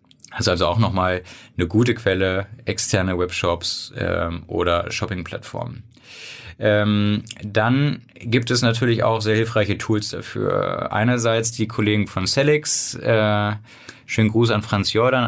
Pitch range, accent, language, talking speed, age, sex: 95-115 Hz, German, German, 125 wpm, 20-39, male